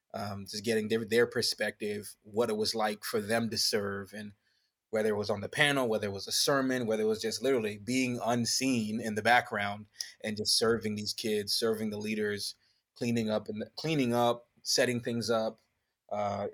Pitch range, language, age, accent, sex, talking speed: 105-120 Hz, English, 20-39, American, male, 195 wpm